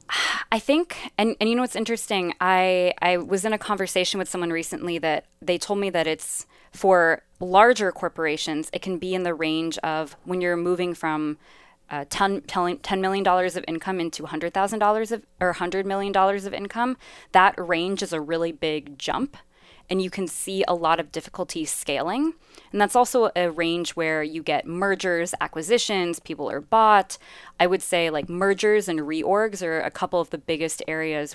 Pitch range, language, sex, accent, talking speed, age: 160-195 Hz, English, female, American, 180 wpm, 20-39